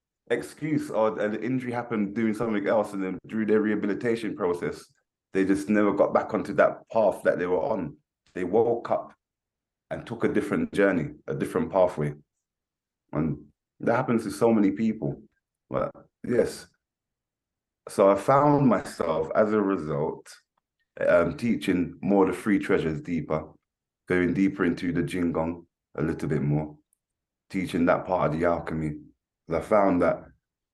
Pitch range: 85-110 Hz